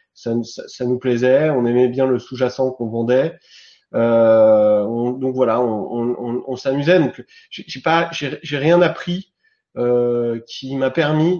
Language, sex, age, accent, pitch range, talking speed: French, male, 30-49, French, 115-135 Hz, 170 wpm